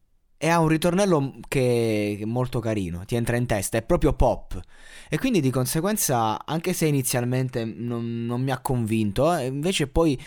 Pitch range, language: 110-145 Hz, Italian